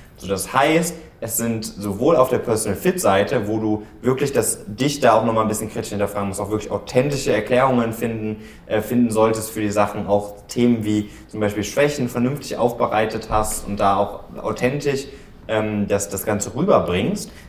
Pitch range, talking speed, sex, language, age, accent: 100-120 Hz, 175 wpm, male, German, 20-39, German